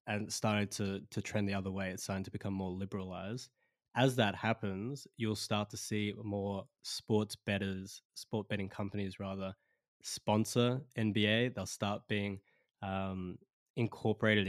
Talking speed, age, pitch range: 145 wpm, 20-39, 100-115 Hz